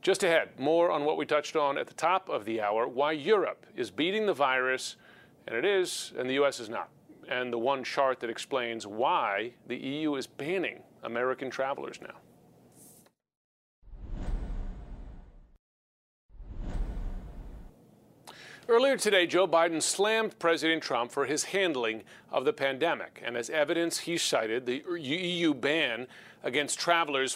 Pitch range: 125-170 Hz